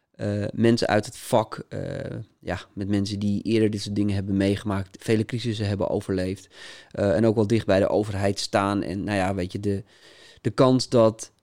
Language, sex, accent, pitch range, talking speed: English, male, Dutch, 105-120 Hz, 195 wpm